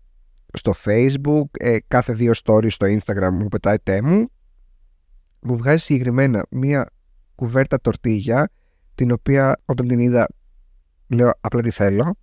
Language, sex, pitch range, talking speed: Greek, male, 95-140 Hz, 130 wpm